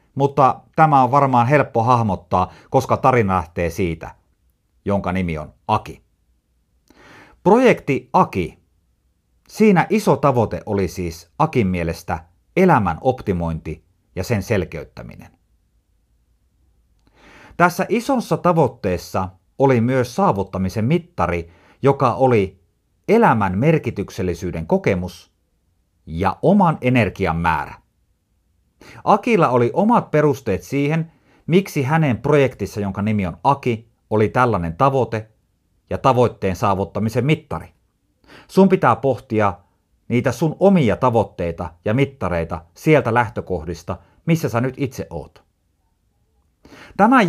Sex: male